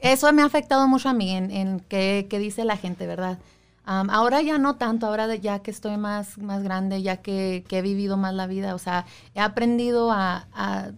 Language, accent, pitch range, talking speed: Spanish, Mexican, 190-235 Hz, 225 wpm